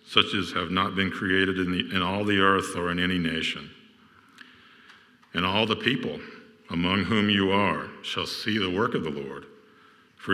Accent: American